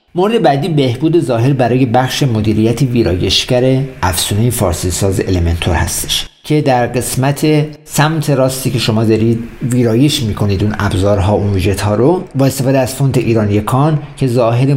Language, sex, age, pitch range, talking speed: Persian, male, 50-69, 105-135 Hz, 140 wpm